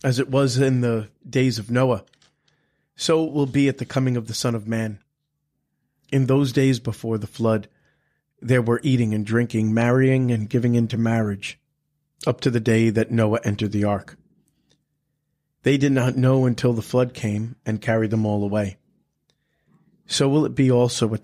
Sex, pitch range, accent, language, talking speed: male, 110-140 Hz, American, English, 180 wpm